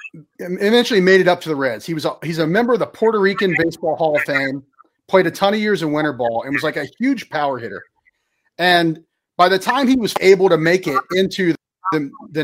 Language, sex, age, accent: English, male, 40-59, American